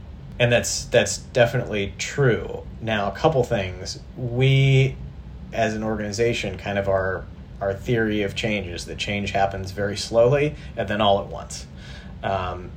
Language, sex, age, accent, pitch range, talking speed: English, male, 30-49, American, 95-115 Hz, 150 wpm